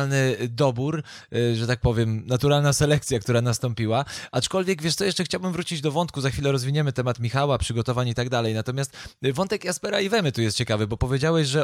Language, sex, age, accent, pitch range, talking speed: Polish, male, 20-39, native, 120-155 Hz, 190 wpm